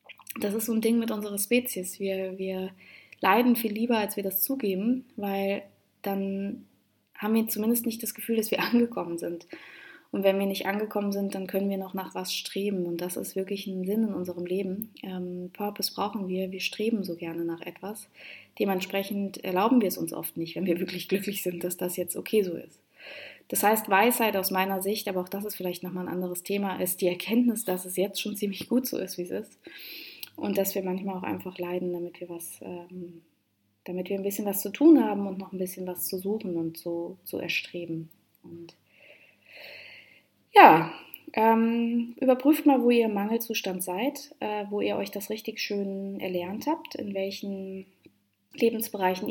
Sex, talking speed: female, 195 wpm